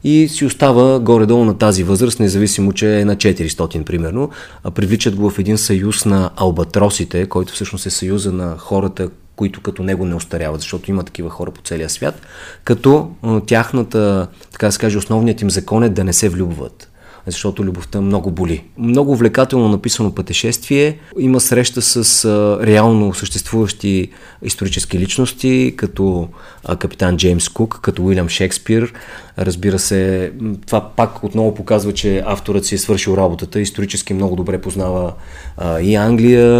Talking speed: 150 wpm